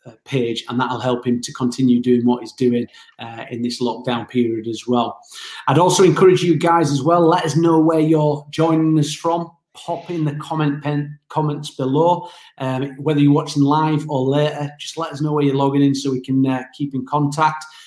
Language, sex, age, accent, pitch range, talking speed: English, male, 30-49, British, 135-160 Hz, 210 wpm